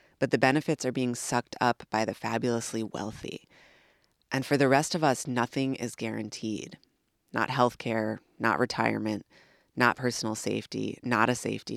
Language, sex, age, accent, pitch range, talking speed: English, female, 20-39, American, 110-125 Hz, 155 wpm